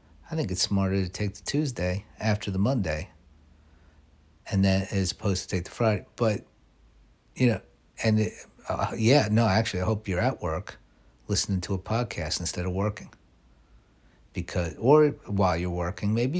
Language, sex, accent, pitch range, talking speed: English, male, American, 95-115 Hz, 165 wpm